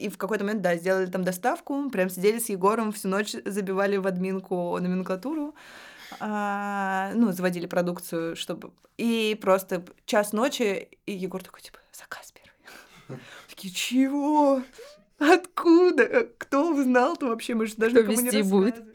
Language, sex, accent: Russian, female, native